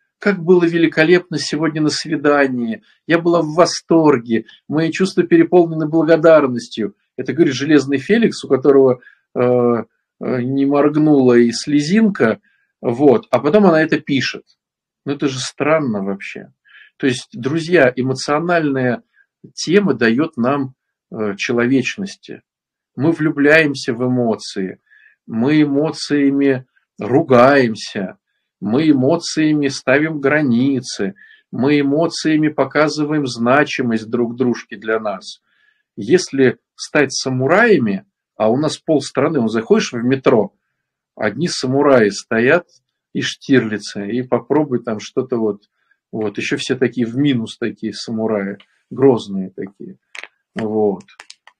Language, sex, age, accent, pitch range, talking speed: Russian, male, 50-69, native, 125-160 Hz, 110 wpm